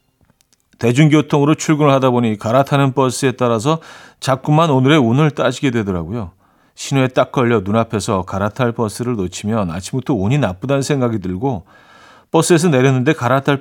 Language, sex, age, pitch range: Korean, male, 40-59, 110-140 Hz